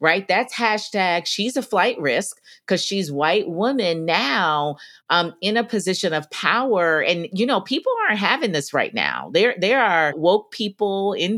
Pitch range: 150-210 Hz